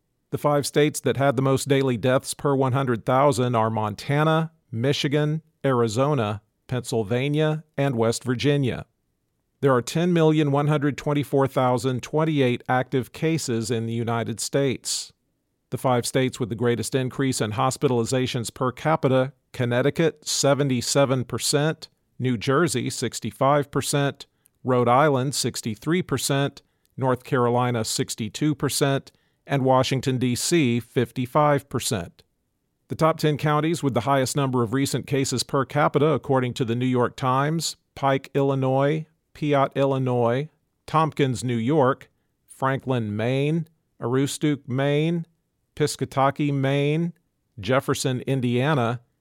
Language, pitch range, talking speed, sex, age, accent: English, 125-145 Hz, 110 wpm, male, 50-69, American